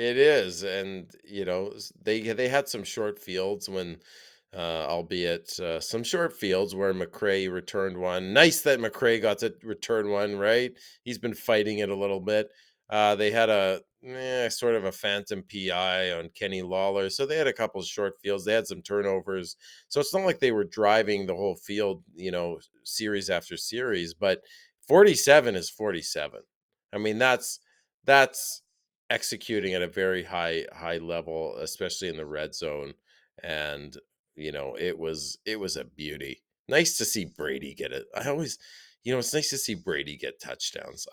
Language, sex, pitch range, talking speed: English, male, 90-115 Hz, 180 wpm